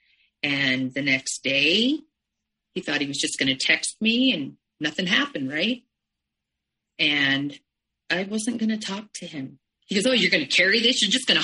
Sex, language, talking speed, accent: female, English, 175 wpm, American